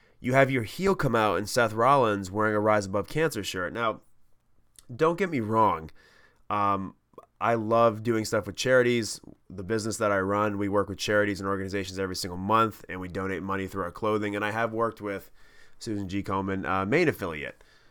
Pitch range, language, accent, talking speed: 100-125 Hz, English, American, 200 wpm